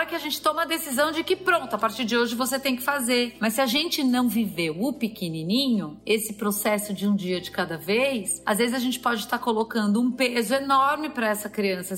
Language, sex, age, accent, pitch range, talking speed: Portuguese, female, 30-49, Brazilian, 205-270 Hz, 230 wpm